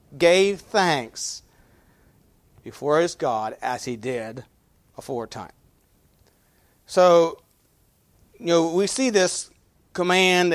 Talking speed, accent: 90 wpm, American